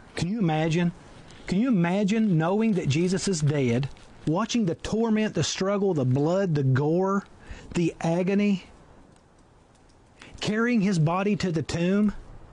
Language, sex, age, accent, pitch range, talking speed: English, male, 40-59, American, 140-175 Hz, 135 wpm